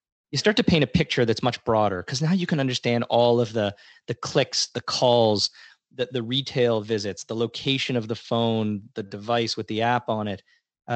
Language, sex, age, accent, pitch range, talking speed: English, male, 20-39, American, 105-130 Hz, 210 wpm